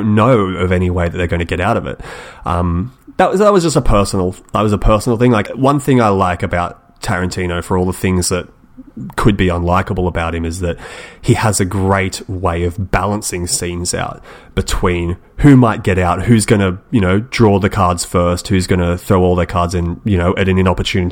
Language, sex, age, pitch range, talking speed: English, male, 30-49, 90-120 Hz, 220 wpm